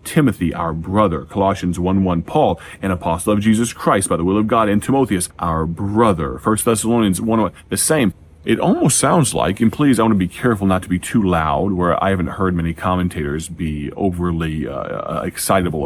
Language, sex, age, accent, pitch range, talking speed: English, male, 30-49, American, 80-105 Hz, 195 wpm